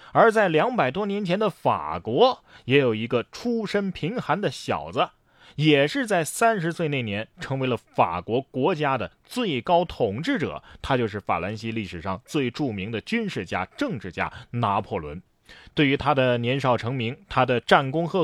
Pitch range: 100-165 Hz